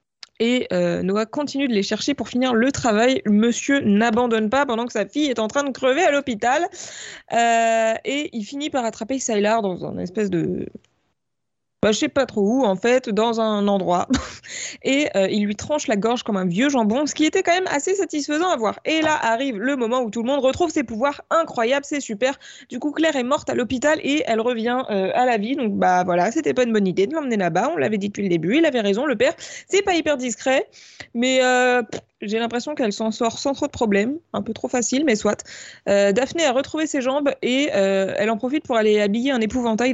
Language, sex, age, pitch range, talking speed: French, female, 20-39, 210-280 Hz, 240 wpm